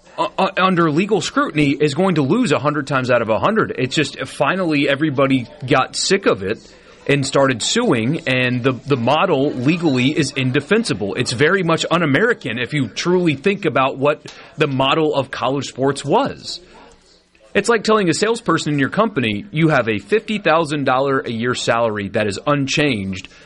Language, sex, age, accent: English, male, 30-49, American